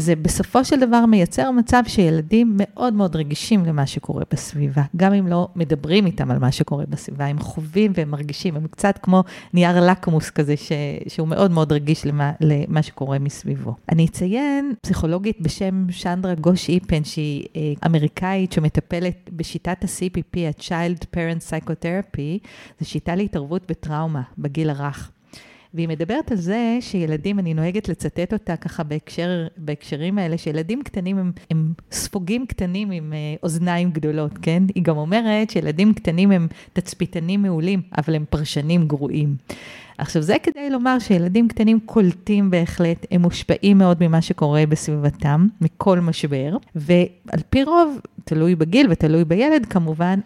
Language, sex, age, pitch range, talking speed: English, female, 40-59, 155-200 Hz, 130 wpm